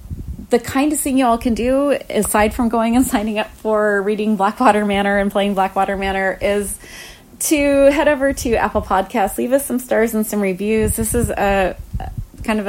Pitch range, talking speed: 185-245 Hz, 190 wpm